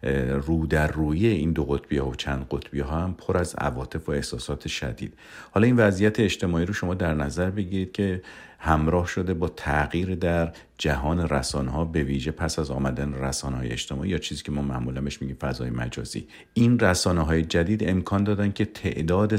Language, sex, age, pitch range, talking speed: Persian, male, 50-69, 75-95 Hz, 185 wpm